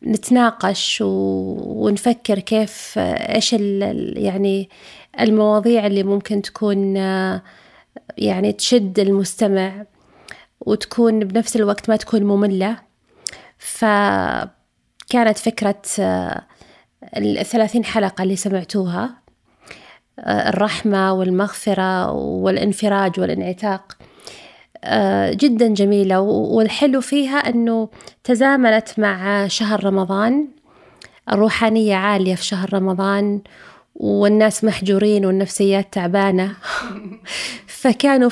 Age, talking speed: 30-49, 75 wpm